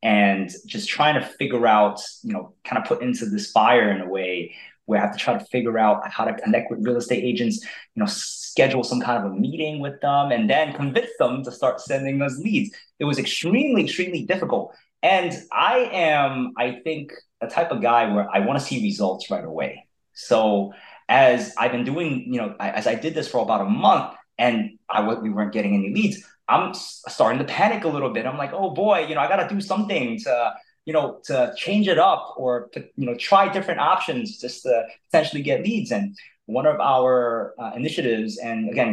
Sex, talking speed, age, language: male, 215 wpm, 20-39, English